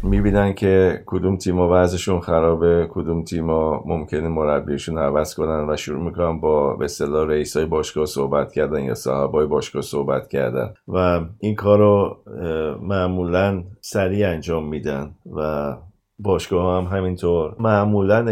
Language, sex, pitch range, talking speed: Persian, male, 75-90 Hz, 135 wpm